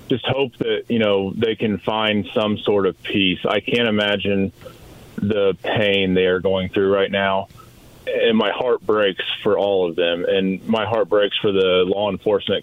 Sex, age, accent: male, 30-49, American